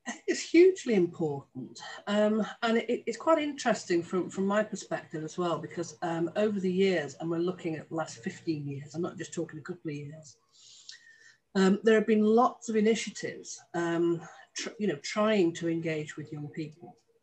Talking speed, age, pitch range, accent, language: 180 wpm, 40-59, 160-210 Hz, British, English